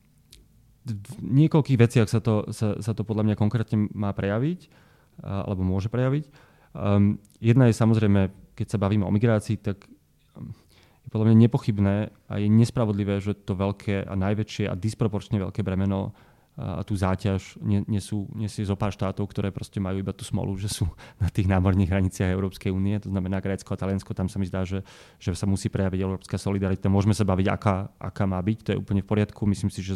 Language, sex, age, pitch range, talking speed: Slovak, male, 20-39, 95-110 Hz, 185 wpm